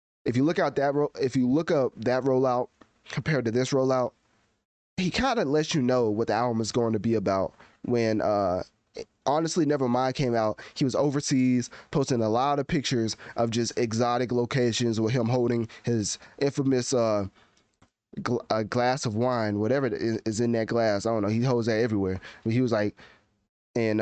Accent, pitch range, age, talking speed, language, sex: American, 110-130 Hz, 20-39, 195 wpm, English, male